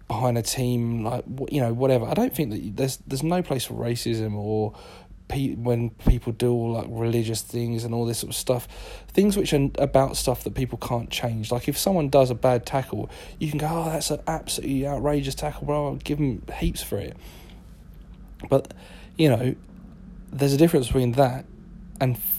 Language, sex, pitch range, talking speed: English, male, 110-135 Hz, 190 wpm